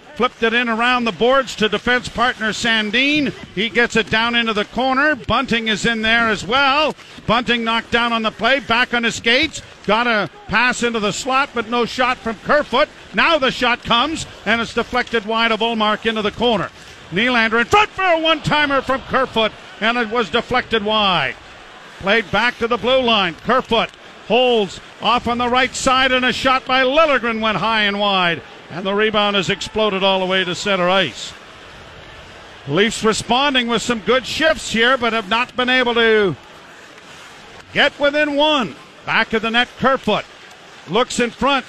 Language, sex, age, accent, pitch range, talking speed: English, male, 50-69, American, 215-255 Hz, 185 wpm